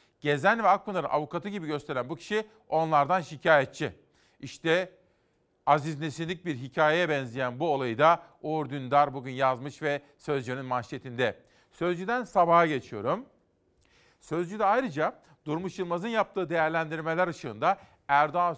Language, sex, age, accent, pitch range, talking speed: Turkish, male, 40-59, native, 140-170 Hz, 125 wpm